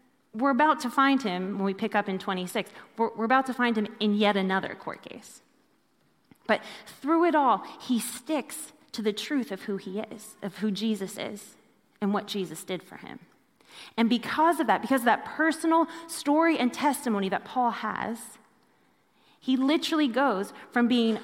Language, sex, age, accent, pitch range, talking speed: English, female, 30-49, American, 205-275 Hz, 180 wpm